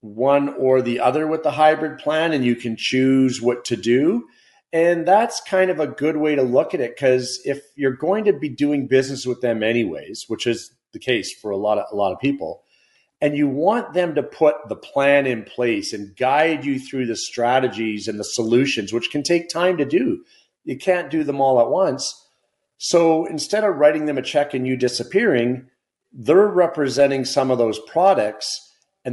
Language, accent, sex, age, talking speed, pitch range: English, American, male, 40-59, 200 wpm, 115-145 Hz